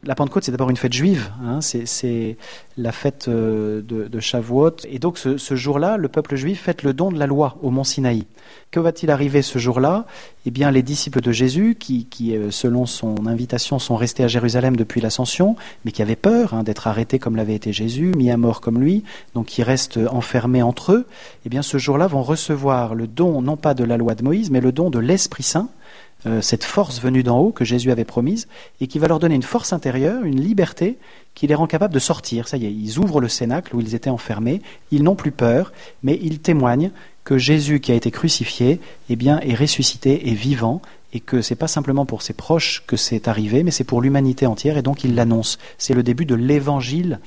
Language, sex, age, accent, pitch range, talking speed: French, male, 40-59, French, 120-150 Hz, 220 wpm